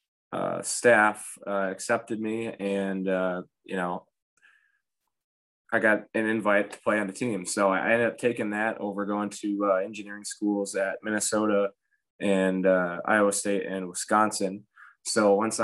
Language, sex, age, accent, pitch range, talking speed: English, male, 20-39, American, 95-105 Hz, 155 wpm